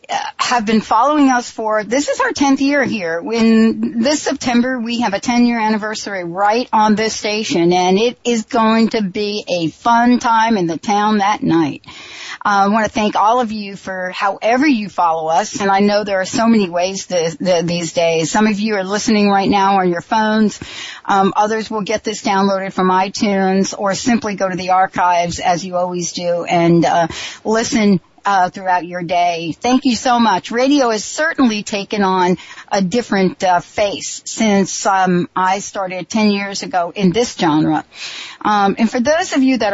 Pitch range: 185-230 Hz